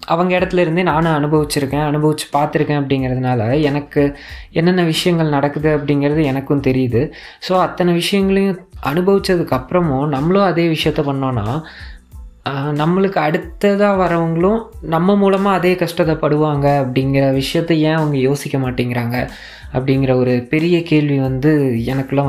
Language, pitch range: Tamil, 130-160 Hz